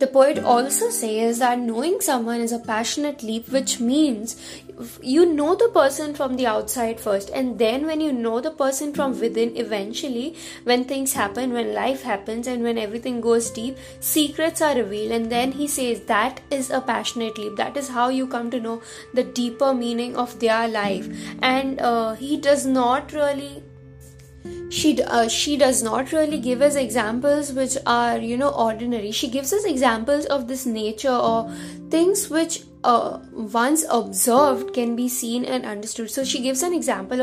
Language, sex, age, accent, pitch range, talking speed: English, female, 20-39, Indian, 230-280 Hz, 175 wpm